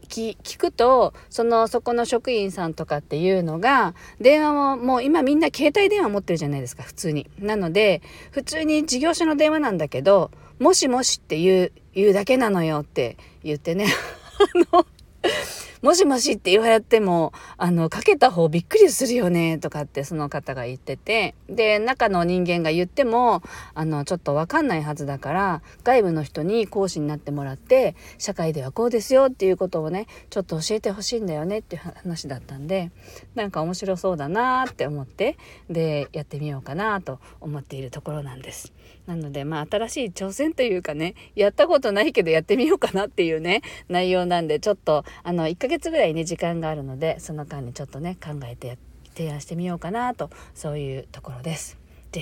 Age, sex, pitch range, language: 40-59, female, 150-225 Hz, Japanese